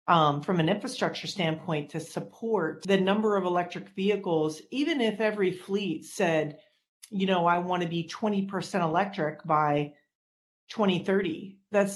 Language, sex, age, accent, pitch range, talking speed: English, female, 40-59, American, 160-195 Hz, 140 wpm